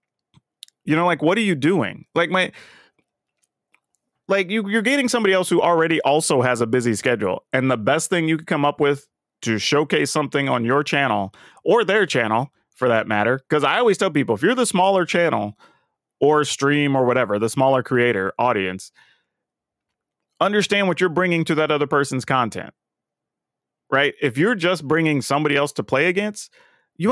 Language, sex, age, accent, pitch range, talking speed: English, male, 30-49, American, 130-185 Hz, 180 wpm